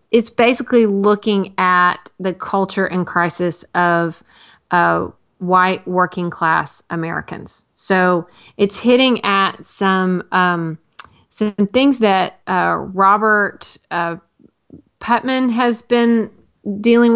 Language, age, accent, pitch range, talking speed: English, 30-49, American, 180-215 Hz, 105 wpm